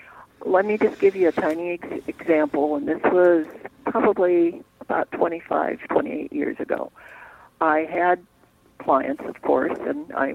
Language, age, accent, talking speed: English, 60-79, American, 140 wpm